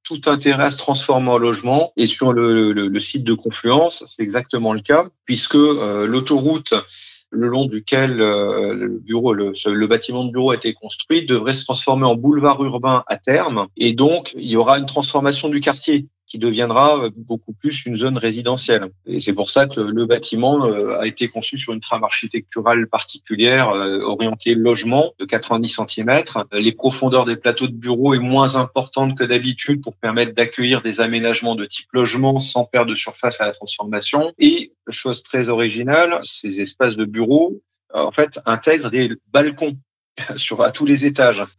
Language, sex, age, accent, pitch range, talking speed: French, male, 40-59, French, 115-135 Hz, 180 wpm